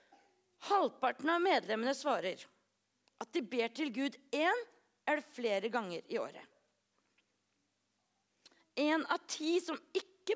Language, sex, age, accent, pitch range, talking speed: English, female, 40-59, Swedish, 195-300 Hz, 115 wpm